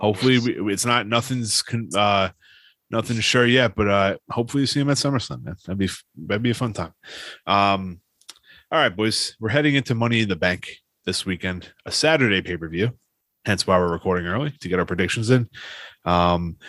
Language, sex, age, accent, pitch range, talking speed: English, male, 30-49, American, 95-125 Hz, 200 wpm